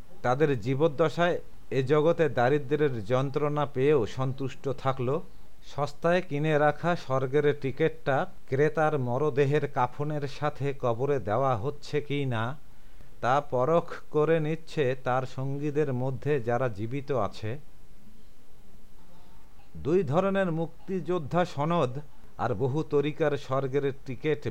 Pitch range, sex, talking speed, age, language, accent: 130-150 Hz, male, 105 wpm, 60-79, English, Indian